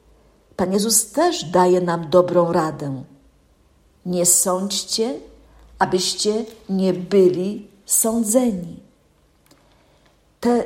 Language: Polish